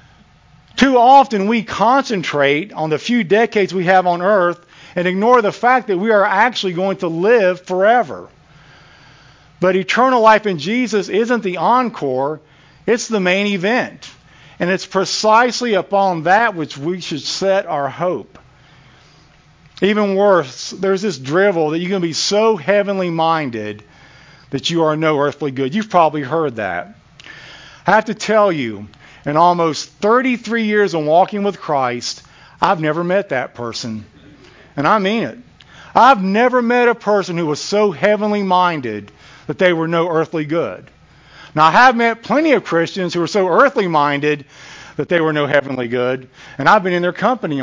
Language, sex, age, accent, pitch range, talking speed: English, male, 50-69, American, 145-205 Hz, 165 wpm